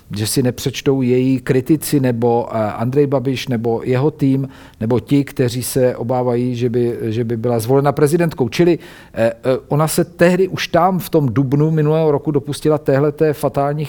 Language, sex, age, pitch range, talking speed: Czech, male, 50-69, 125-145 Hz, 160 wpm